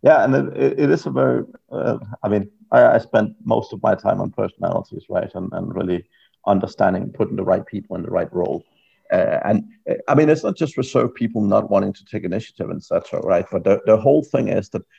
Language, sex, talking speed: English, male, 220 wpm